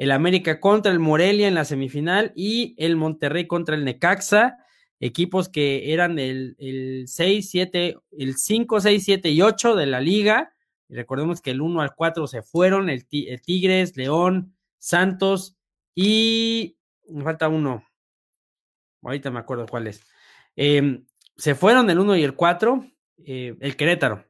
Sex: male